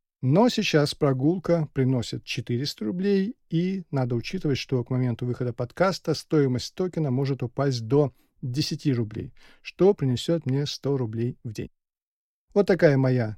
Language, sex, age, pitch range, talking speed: Russian, male, 40-59, 130-170 Hz, 140 wpm